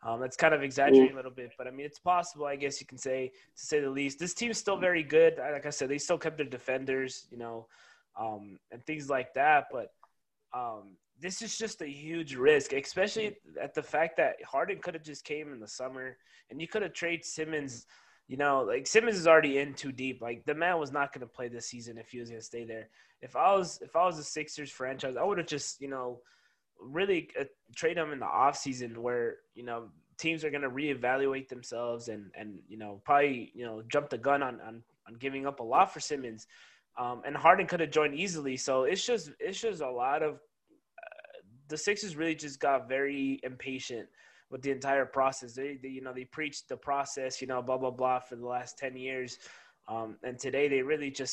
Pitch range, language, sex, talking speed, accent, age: 125-155 Hz, English, male, 230 wpm, American, 20-39